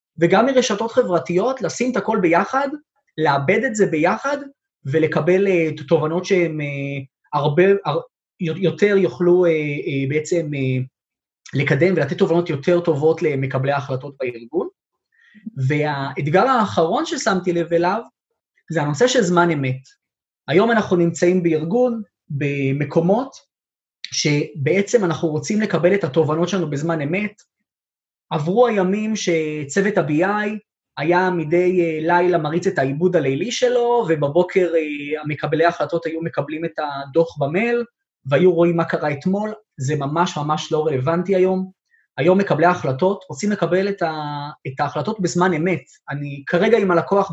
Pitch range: 155-200 Hz